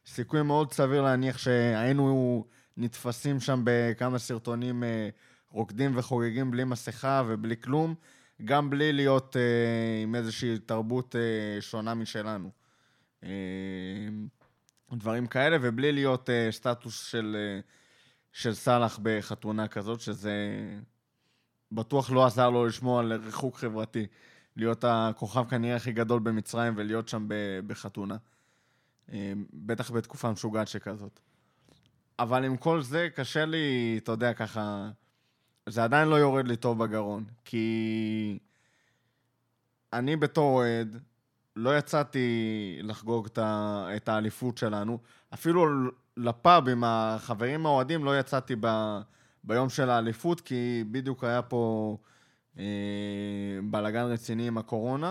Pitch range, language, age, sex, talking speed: 110-130 Hz, Hebrew, 20-39, male, 110 wpm